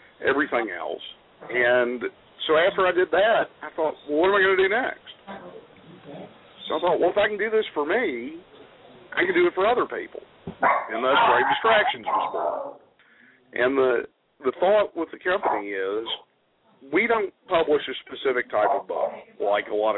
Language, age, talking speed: English, 50-69, 180 wpm